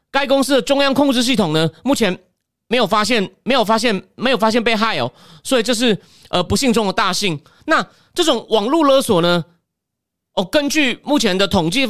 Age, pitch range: 30-49, 200-270 Hz